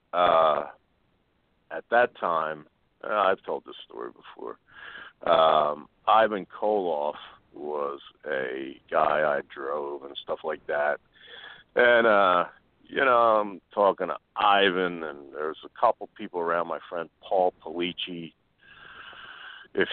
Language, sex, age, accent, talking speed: English, male, 50-69, American, 125 wpm